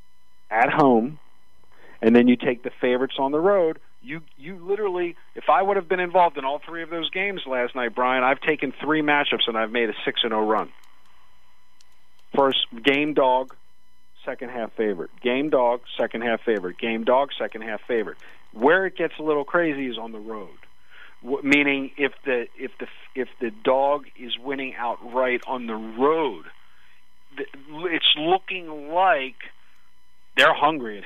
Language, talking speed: English, 170 wpm